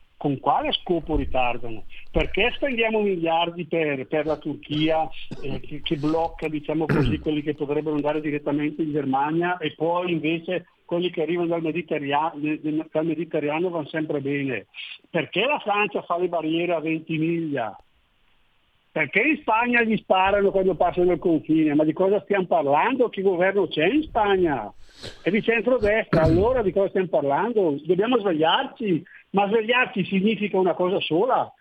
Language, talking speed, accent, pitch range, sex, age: Italian, 150 wpm, native, 155-205 Hz, male, 50-69